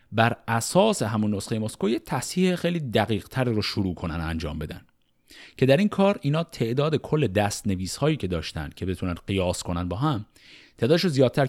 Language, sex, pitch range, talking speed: Persian, male, 90-145 Hz, 170 wpm